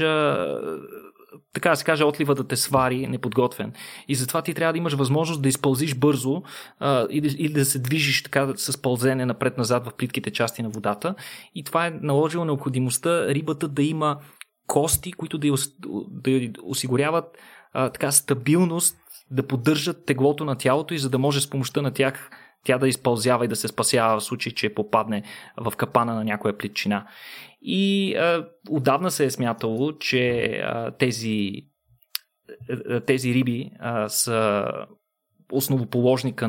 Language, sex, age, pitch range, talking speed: Bulgarian, male, 20-39, 120-150 Hz, 155 wpm